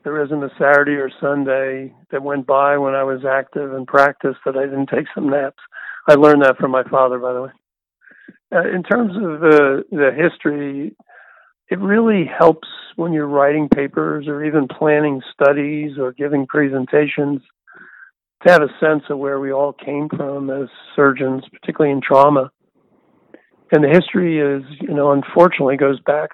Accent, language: American, English